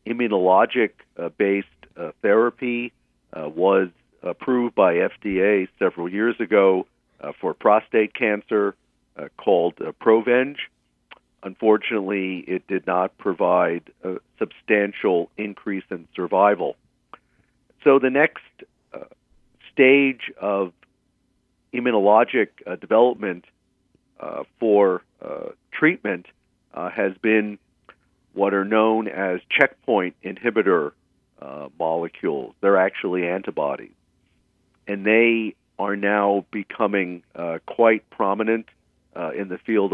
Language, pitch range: English, 95-115 Hz